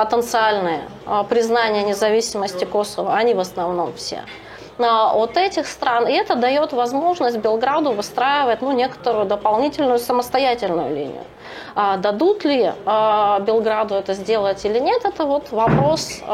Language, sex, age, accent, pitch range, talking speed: Russian, female, 20-39, native, 215-265 Hz, 120 wpm